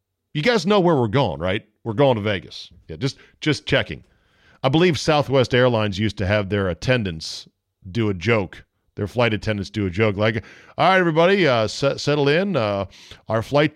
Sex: male